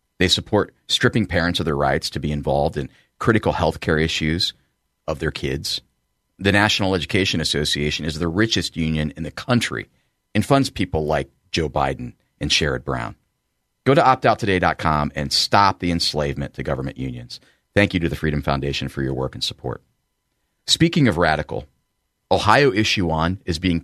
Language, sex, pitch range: English, male, 75-95 Hz